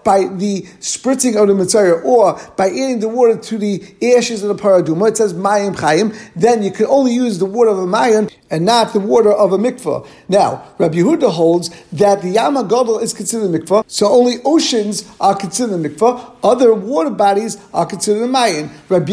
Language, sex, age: English, male, 50-69